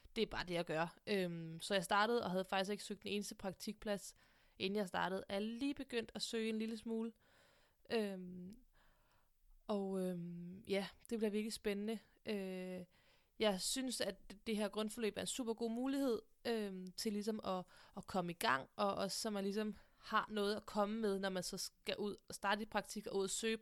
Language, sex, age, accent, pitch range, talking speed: Danish, female, 20-39, native, 195-225 Hz, 205 wpm